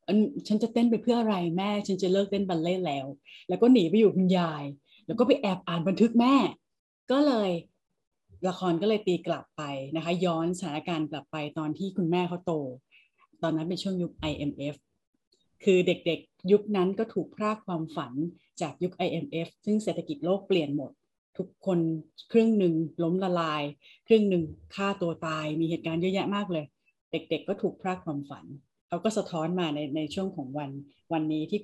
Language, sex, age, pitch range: Thai, female, 30-49, 160-200 Hz